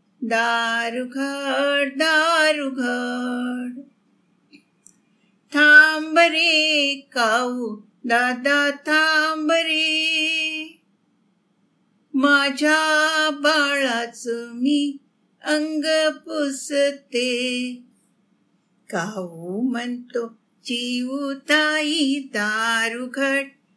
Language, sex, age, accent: Marathi, female, 50-69, native